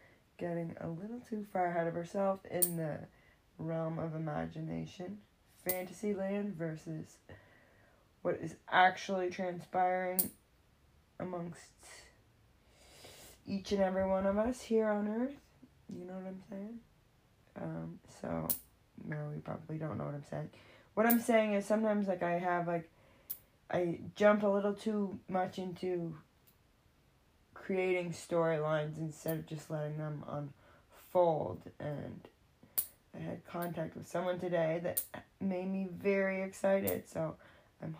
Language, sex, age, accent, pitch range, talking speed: English, female, 20-39, American, 165-195 Hz, 130 wpm